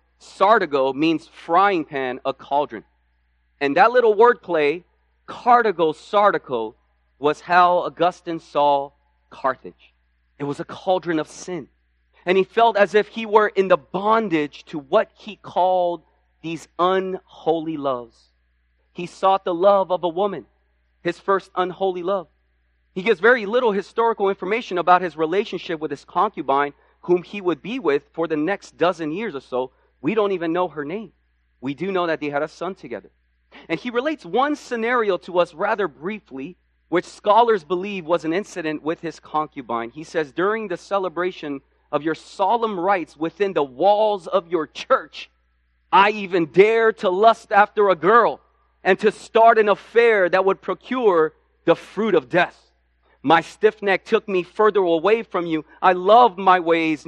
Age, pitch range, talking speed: 30-49, 145-200 Hz, 165 wpm